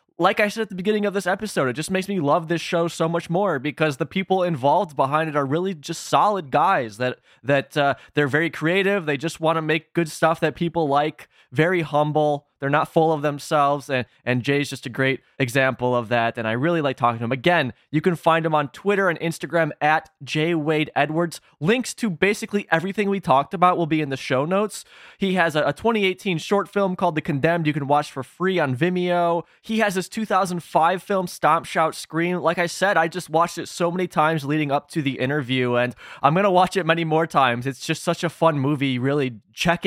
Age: 20-39